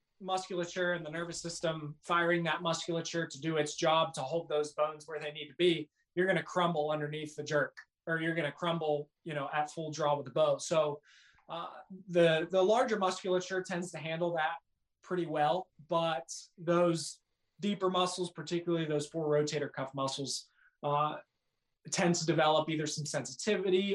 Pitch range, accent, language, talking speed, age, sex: 150-175 Hz, American, English, 175 wpm, 20-39, male